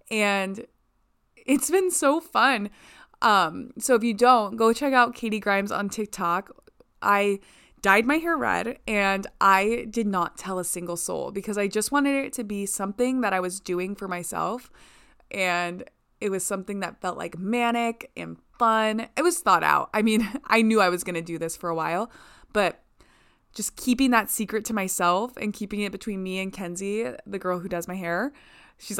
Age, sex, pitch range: 20-39, female, 190-235 Hz